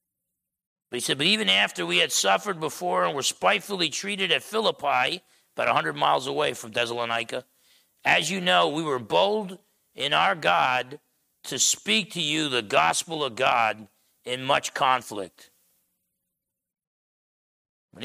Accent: American